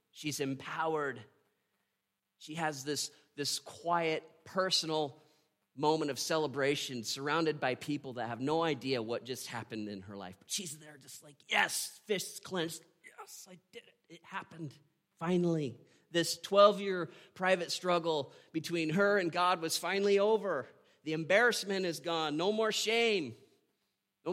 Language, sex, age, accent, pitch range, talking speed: English, male, 40-59, American, 130-175 Hz, 145 wpm